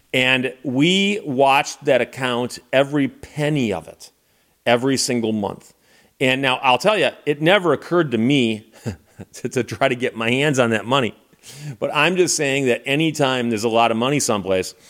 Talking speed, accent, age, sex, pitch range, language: 175 wpm, American, 40-59, male, 115-145 Hz, English